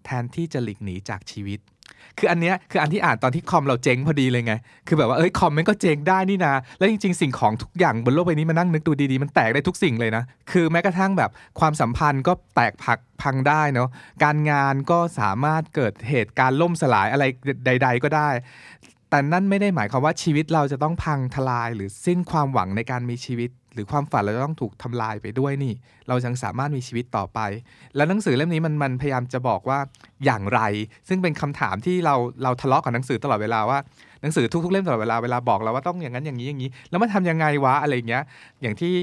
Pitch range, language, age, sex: 120-155 Hz, Thai, 20-39, male